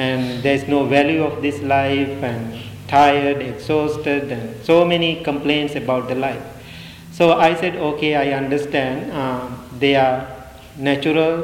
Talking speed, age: 140 wpm, 50-69